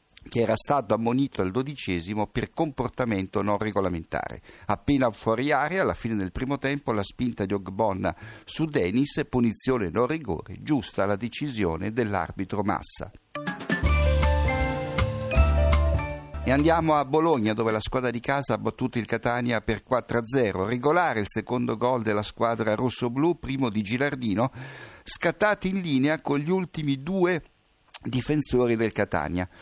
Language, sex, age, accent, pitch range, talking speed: Italian, male, 60-79, native, 105-135 Hz, 135 wpm